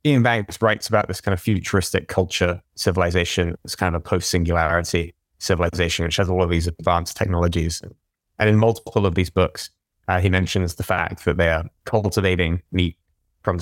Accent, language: British, English